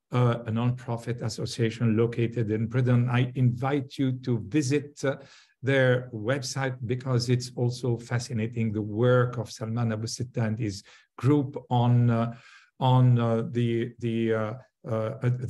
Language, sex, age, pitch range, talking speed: English, male, 50-69, 115-130 Hz, 135 wpm